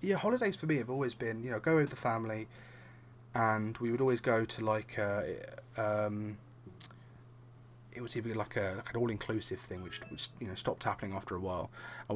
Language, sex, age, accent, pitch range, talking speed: English, male, 20-39, British, 110-125 Hz, 215 wpm